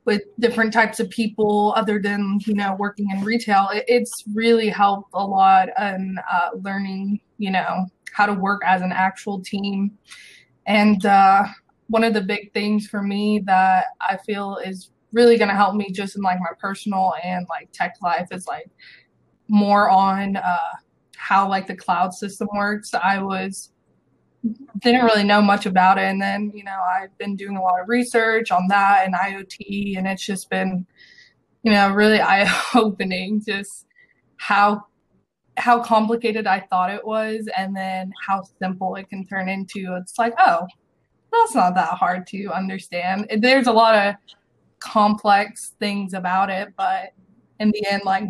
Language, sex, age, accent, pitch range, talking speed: English, female, 20-39, American, 190-215 Hz, 170 wpm